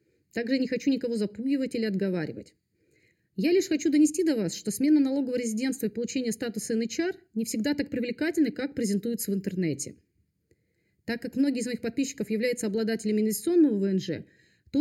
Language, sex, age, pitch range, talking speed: Russian, female, 30-49, 210-275 Hz, 160 wpm